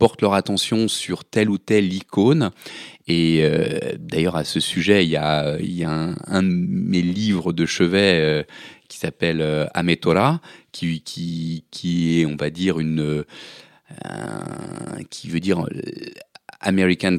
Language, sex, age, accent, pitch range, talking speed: French, male, 30-49, French, 80-100 Hz, 160 wpm